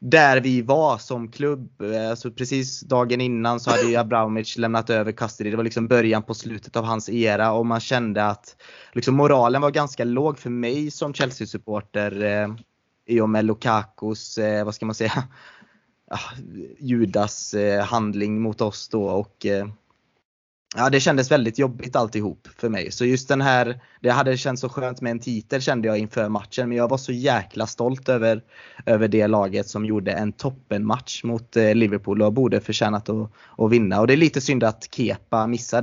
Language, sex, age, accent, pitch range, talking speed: Swedish, male, 20-39, native, 105-125 Hz, 185 wpm